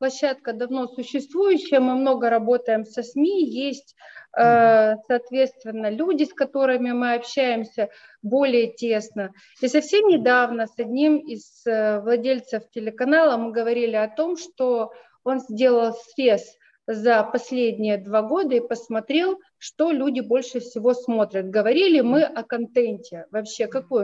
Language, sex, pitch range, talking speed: Russian, female, 230-285 Hz, 125 wpm